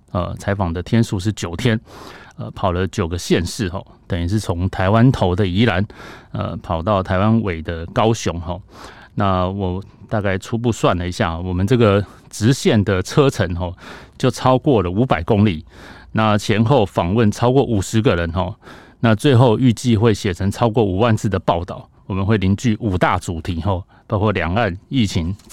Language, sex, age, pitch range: Chinese, male, 30-49, 90-115 Hz